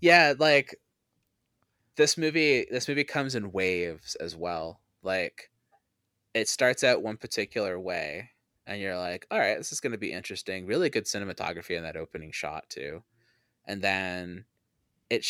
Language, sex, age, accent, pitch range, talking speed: English, male, 20-39, American, 90-120 Hz, 155 wpm